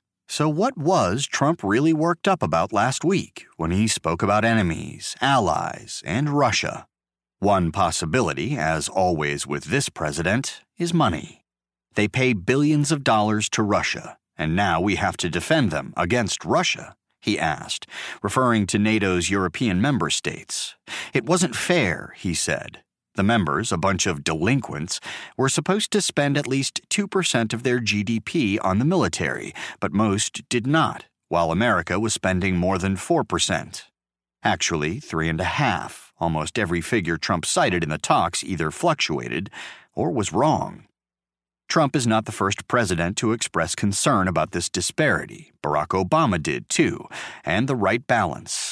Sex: male